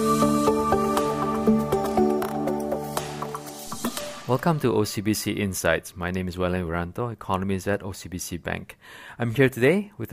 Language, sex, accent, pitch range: English, male, Malaysian, 95-115 Hz